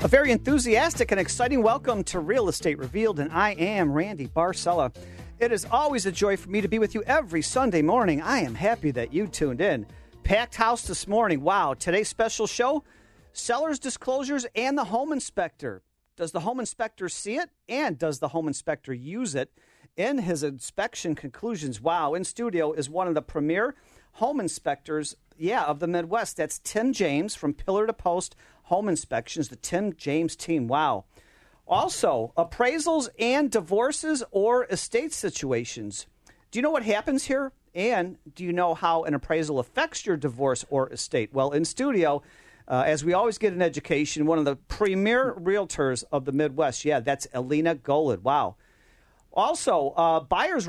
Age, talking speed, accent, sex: 40-59, 175 wpm, American, male